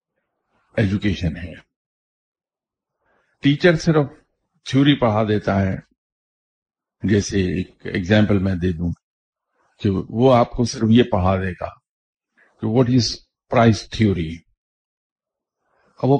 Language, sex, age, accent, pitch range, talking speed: English, male, 50-69, Indian, 95-125 Hz, 95 wpm